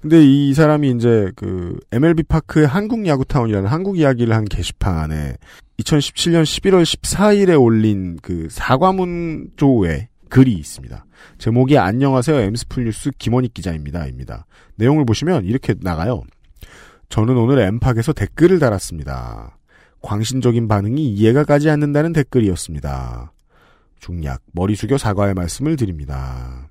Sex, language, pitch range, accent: male, Korean, 90-140 Hz, native